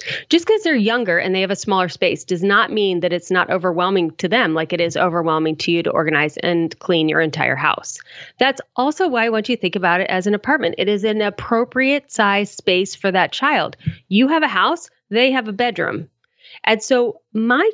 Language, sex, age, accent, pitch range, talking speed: English, female, 30-49, American, 175-230 Hz, 220 wpm